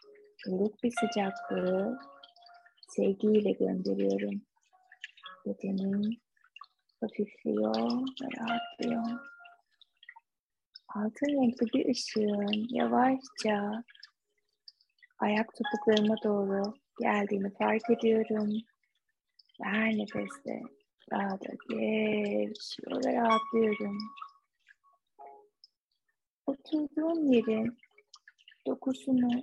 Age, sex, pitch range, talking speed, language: 20-39, female, 200-285 Hz, 55 wpm, Turkish